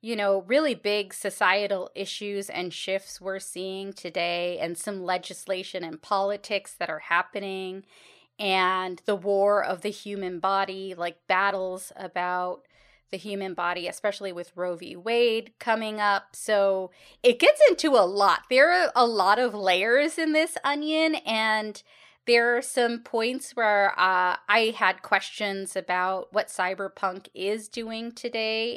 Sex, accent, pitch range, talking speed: female, American, 185-225 Hz, 145 wpm